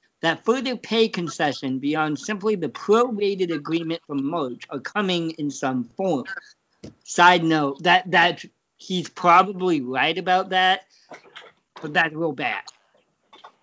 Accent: American